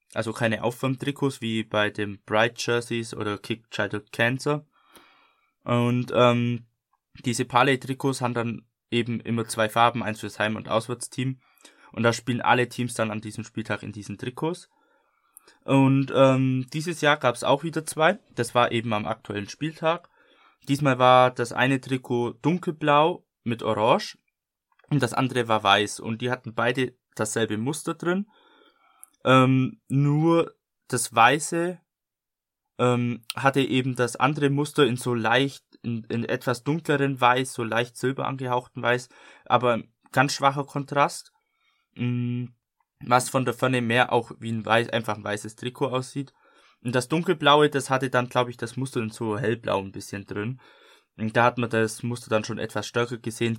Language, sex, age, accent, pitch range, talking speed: German, male, 20-39, German, 115-135 Hz, 160 wpm